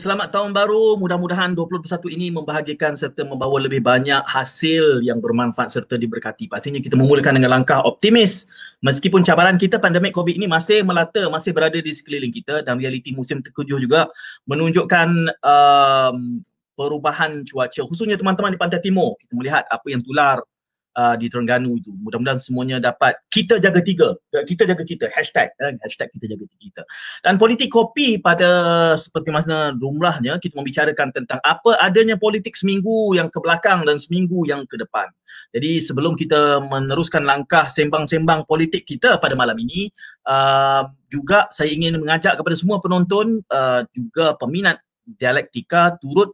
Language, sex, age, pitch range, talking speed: Malay, male, 30-49, 135-185 Hz, 155 wpm